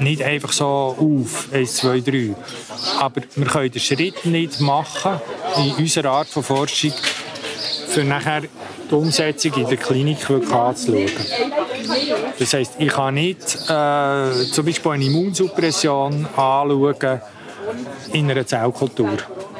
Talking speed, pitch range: 125 wpm, 130-150 Hz